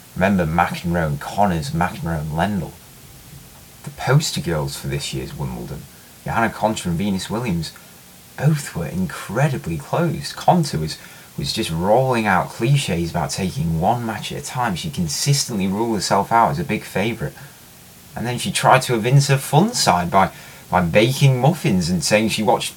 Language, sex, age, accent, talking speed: English, male, 30-49, British, 165 wpm